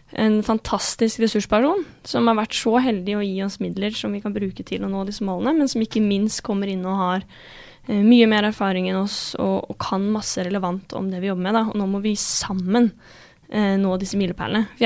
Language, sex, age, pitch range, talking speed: English, female, 10-29, 195-230 Hz, 215 wpm